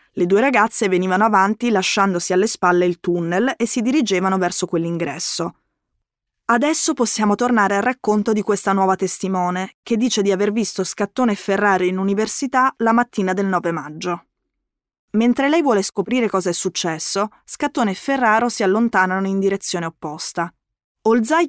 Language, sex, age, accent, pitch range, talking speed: Italian, female, 20-39, native, 180-230 Hz, 155 wpm